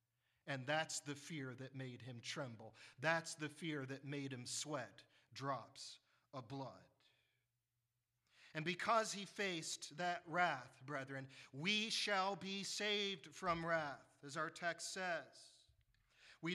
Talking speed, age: 130 wpm, 40-59